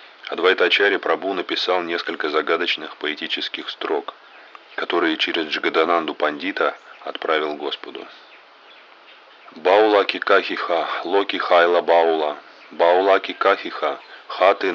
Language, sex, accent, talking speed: Russian, male, native, 85 wpm